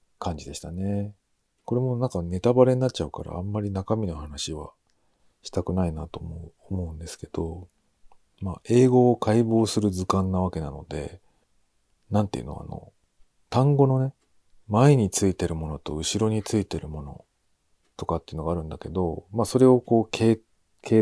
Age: 40-59